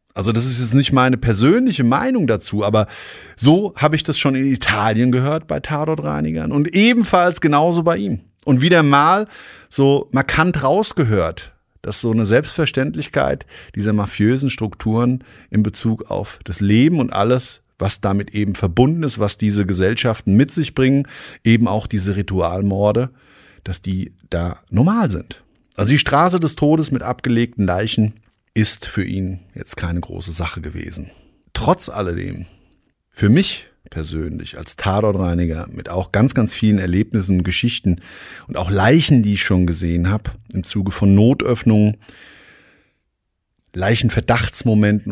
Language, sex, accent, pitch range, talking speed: German, male, German, 95-125 Hz, 145 wpm